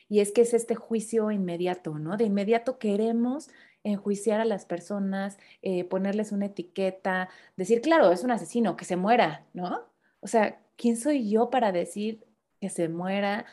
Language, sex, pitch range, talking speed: Spanish, female, 175-230 Hz, 170 wpm